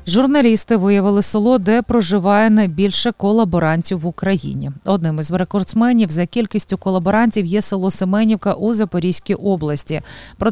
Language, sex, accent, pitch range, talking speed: Ukrainian, female, native, 170-210 Hz, 125 wpm